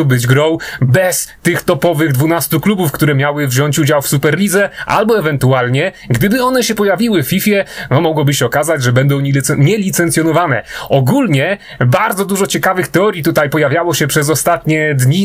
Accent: native